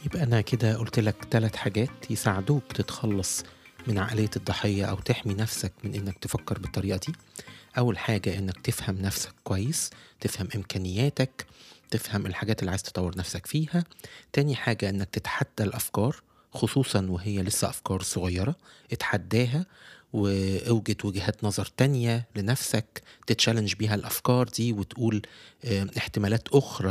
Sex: male